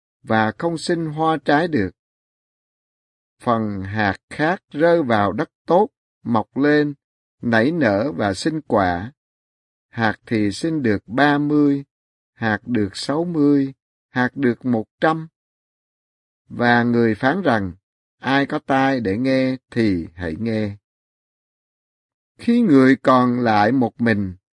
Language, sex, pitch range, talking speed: Vietnamese, male, 110-150 Hz, 125 wpm